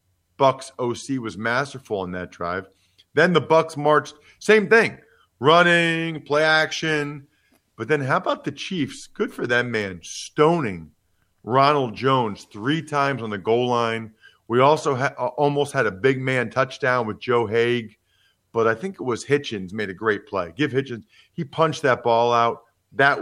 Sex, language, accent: male, English, American